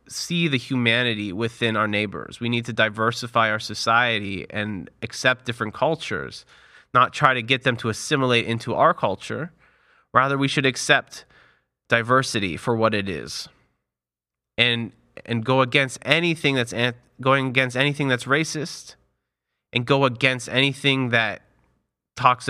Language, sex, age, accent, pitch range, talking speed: English, male, 30-49, American, 100-125 Hz, 140 wpm